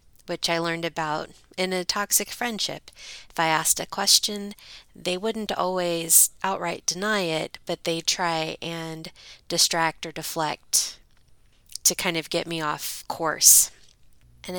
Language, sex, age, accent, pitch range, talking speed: English, female, 30-49, American, 155-195 Hz, 140 wpm